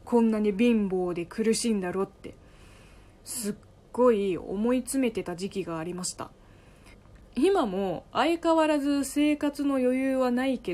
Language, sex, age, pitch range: Japanese, female, 20-39, 175-260 Hz